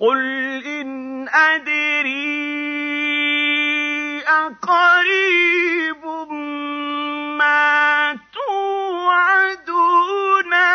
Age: 40-59